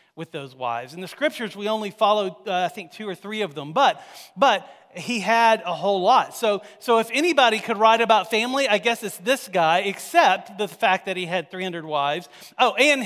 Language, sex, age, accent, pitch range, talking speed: English, male, 40-59, American, 175-240 Hz, 220 wpm